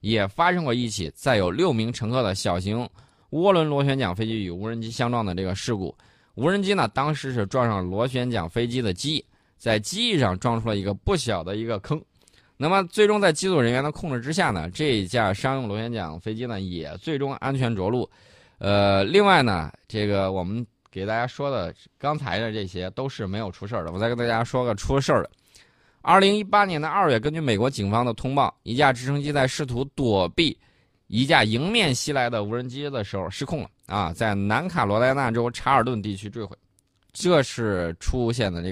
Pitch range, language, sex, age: 100-140 Hz, Chinese, male, 20-39